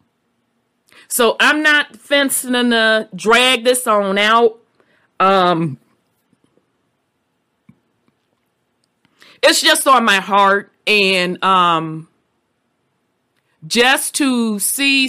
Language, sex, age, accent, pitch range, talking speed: English, female, 30-49, American, 195-260 Hz, 80 wpm